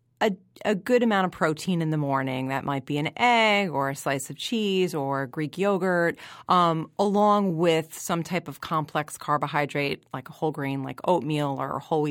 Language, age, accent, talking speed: English, 30-49, American, 190 wpm